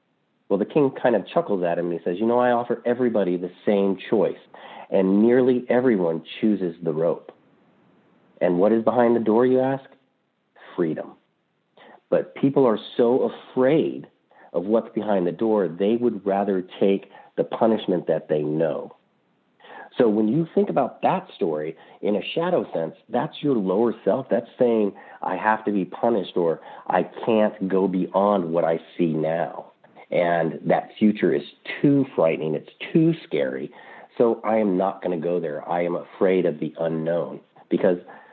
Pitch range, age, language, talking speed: 90-120 Hz, 40-59, English, 170 wpm